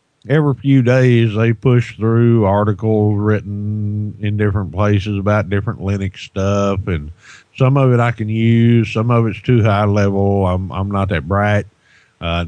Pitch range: 95-125 Hz